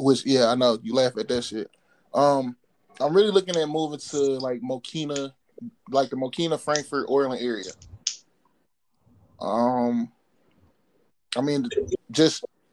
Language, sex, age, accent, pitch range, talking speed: English, male, 20-39, American, 125-150 Hz, 130 wpm